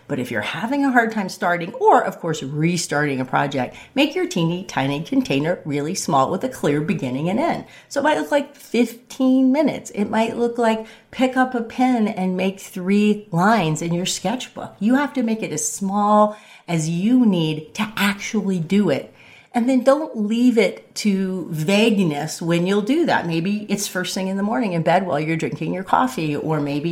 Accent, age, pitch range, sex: American, 40-59, 155-220 Hz, female